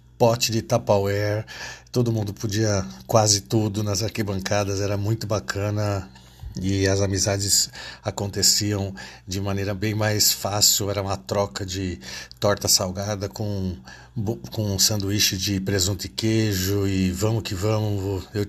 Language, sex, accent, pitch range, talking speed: Portuguese, male, Brazilian, 100-110 Hz, 130 wpm